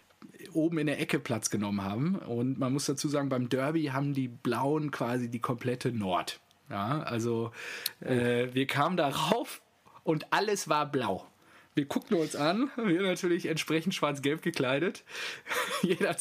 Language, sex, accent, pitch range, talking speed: German, male, German, 110-155 Hz, 150 wpm